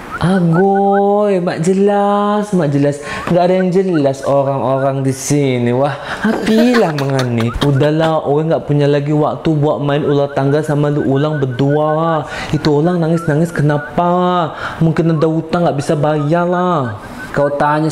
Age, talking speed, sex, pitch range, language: 20-39, 135 wpm, male, 140-165 Hz, Indonesian